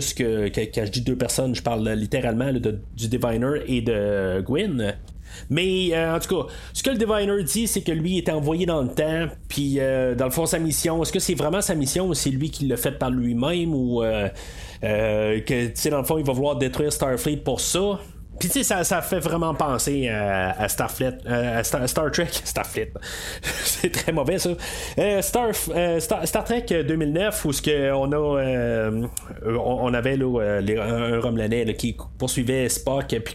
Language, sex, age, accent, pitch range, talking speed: French, male, 30-49, Canadian, 120-165 Hz, 210 wpm